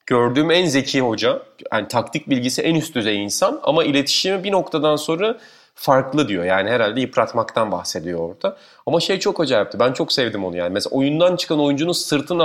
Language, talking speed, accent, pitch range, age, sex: Turkish, 185 wpm, native, 110-160 Hz, 30-49, male